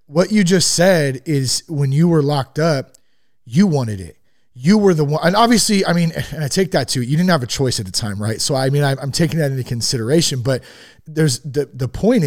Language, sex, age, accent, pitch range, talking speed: English, male, 30-49, American, 125-165 Hz, 235 wpm